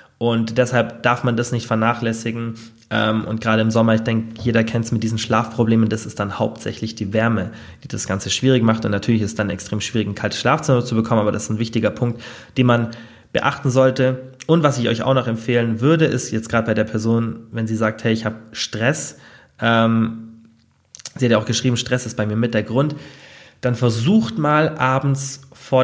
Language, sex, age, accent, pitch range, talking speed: German, male, 20-39, German, 110-130 Hz, 210 wpm